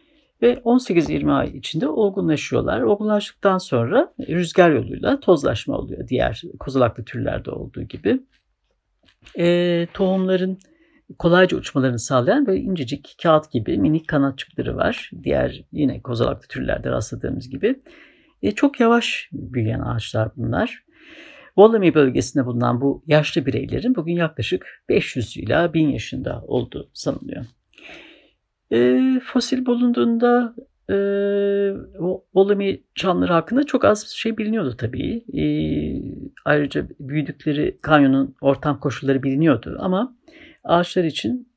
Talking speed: 110 wpm